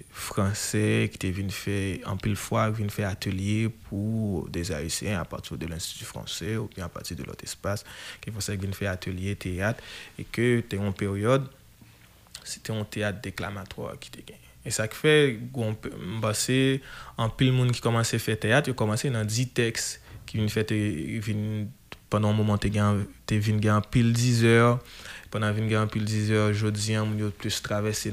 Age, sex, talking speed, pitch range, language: 20-39, male, 180 wpm, 105-120 Hz, French